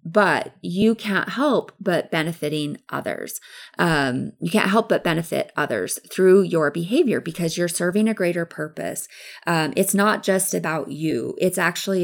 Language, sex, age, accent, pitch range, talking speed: English, female, 20-39, American, 165-200 Hz, 155 wpm